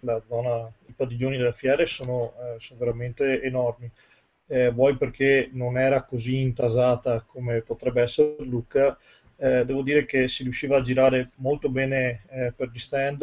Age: 30-49